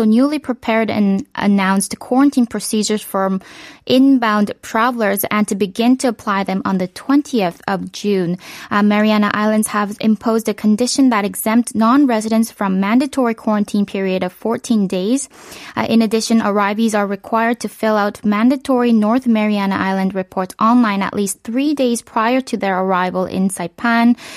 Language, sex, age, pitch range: Korean, female, 20-39, 195-235 Hz